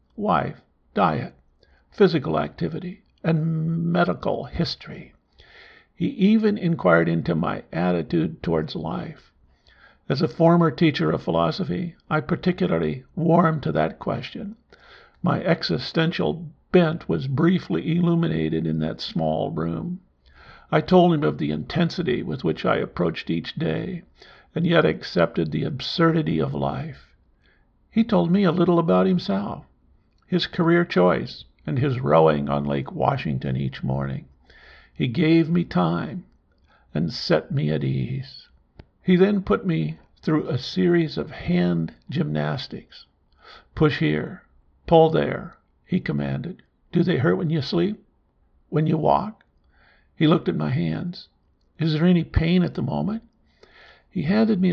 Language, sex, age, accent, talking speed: English, male, 60-79, American, 135 wpm